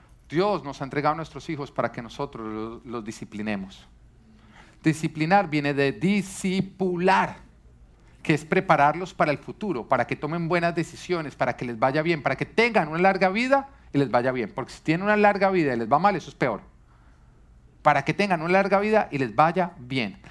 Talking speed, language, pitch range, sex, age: 190 wpm, Spanish, 140-195 Hz, male, 40-59